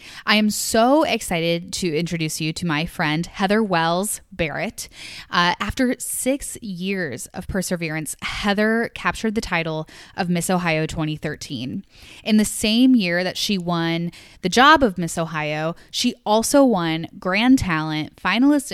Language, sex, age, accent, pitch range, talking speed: English, female, 10-29, American, 165-215 Hz, 145 wpm